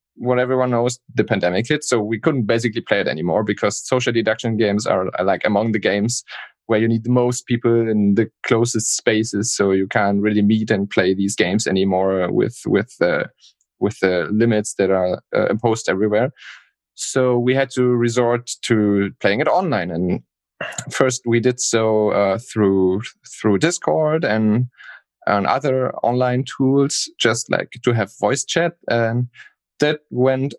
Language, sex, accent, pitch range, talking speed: English, male, German, 105-125 Hz, 170 wpm